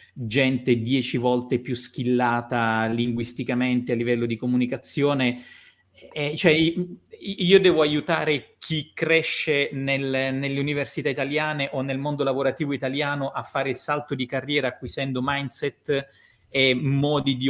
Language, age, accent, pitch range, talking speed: Italian, 30-49, native, 125-145 Hz, 125 wpm